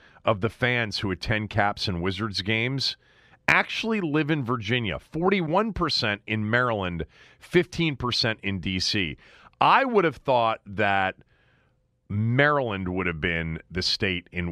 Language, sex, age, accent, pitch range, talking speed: English, male, 40-59, American, 85-115 Hz, 130 wpm